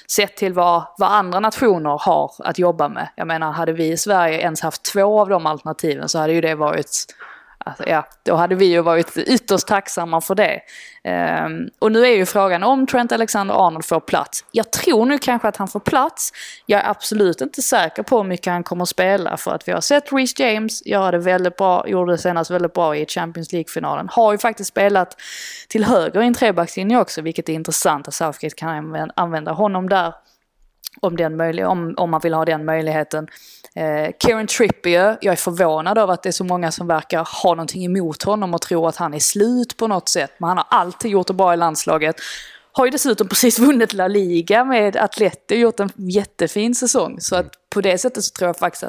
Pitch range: 165-215 Hz